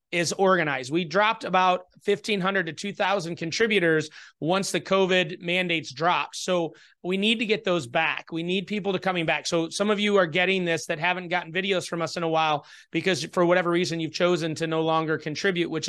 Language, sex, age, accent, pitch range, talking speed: English, male, 30-49, American, 165-190 Hz, 205 wpm